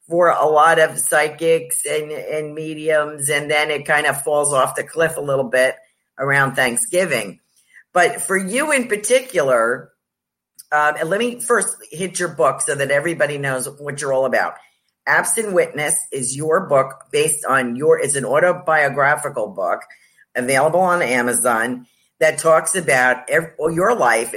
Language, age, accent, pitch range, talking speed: English, 50-69, American, 130-165 Hz, 155 wpm